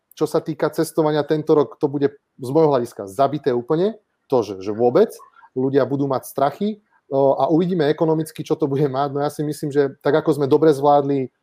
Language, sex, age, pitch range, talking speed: Slovak, male, 30-49, 125-150 Hz, 205 wpm